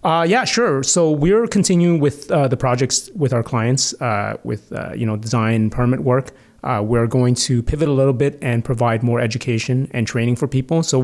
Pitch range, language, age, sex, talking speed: 120-140 Hz, English, 30-49, male, 205 wpm